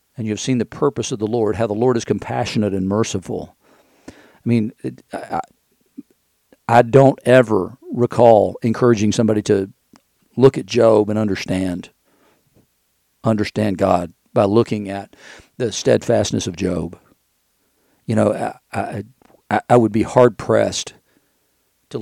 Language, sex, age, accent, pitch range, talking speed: English, male, 50-69, American, 100-120 Hz, 135 wpm